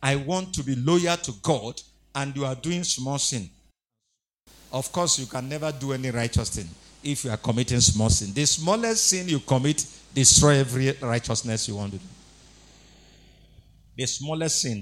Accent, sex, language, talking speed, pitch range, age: Nigerian, male, English, 175 wpm, 120-175 Hz, 50-69